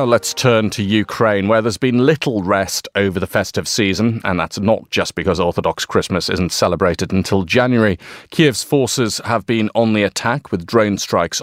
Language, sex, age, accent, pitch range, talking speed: English, male, 30-49, British, 90-120 Hz, 180 wpm